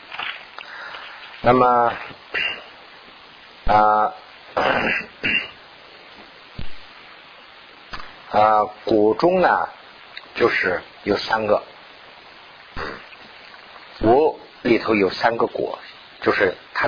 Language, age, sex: Chinese, 50-69, male